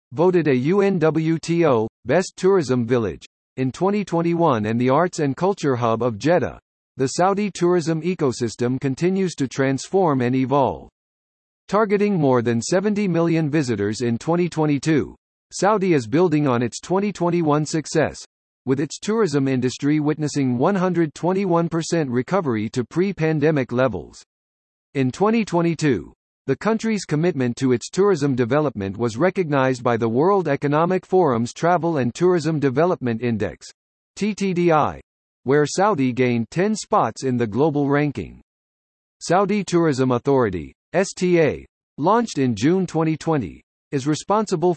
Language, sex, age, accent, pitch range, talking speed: English, male, 50-69, American, 125-180 Hz, 120 wpm